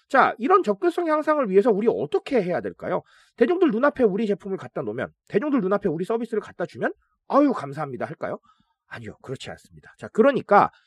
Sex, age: male, 30-49